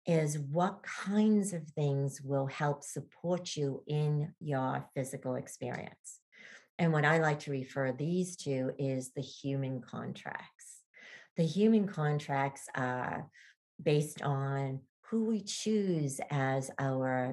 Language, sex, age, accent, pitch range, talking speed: English, female, 50-69, American, 140-175 Hz, 125 wpm